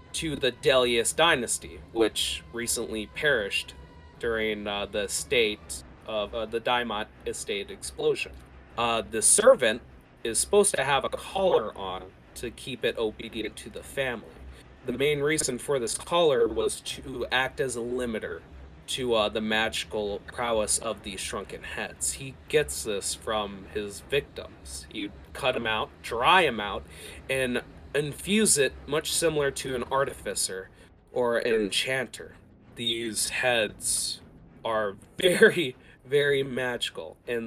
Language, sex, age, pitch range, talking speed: English, male, 30-49, 105-150 Hz, 140 wpm